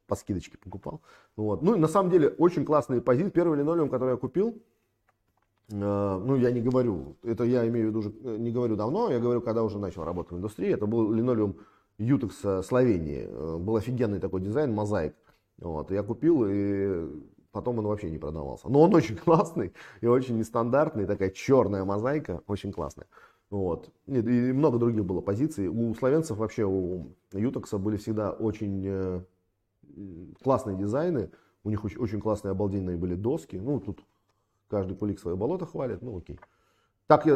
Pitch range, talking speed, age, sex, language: 95-125 Hz, 170 wpm, 30-49, male, Russian